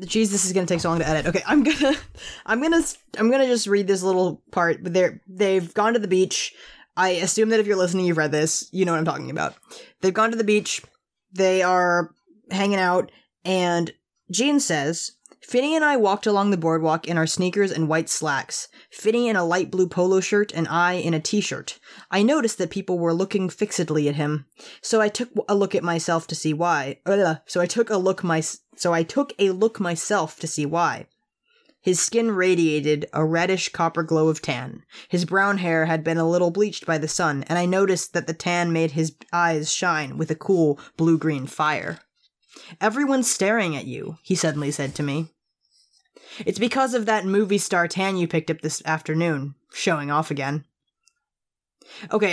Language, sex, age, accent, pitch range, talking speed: English, female, 20-39, American, 160-205 Hz, 200 wpm